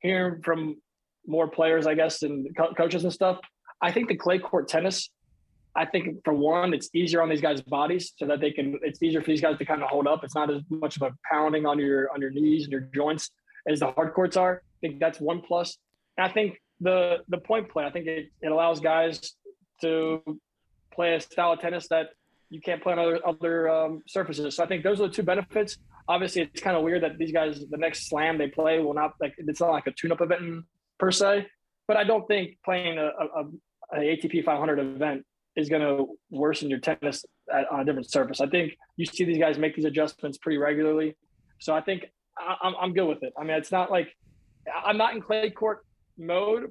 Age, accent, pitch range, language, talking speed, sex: 20-39, American, 155-180 Hz, English, 230 wpm, male